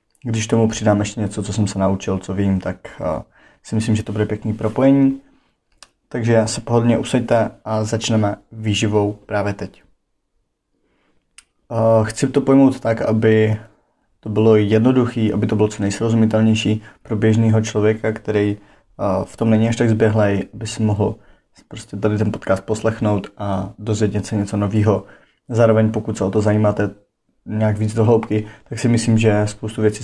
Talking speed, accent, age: 165 wpm, native, 20-39